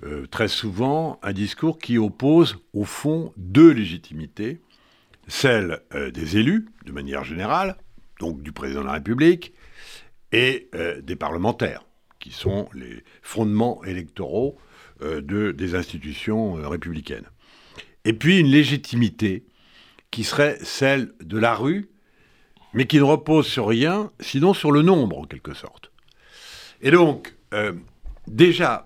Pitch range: 105-170 Hz